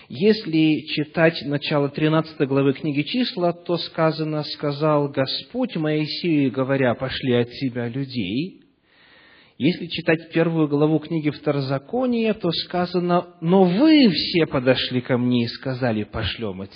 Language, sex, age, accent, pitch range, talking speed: Russian, male, 40-59, native, 120-165 Hz, 125 wpm